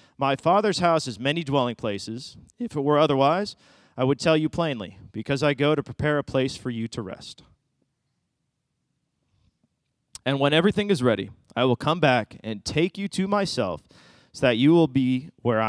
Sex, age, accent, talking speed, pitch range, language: male, 30-49, American, 180 wpm, 125-180 Hz, English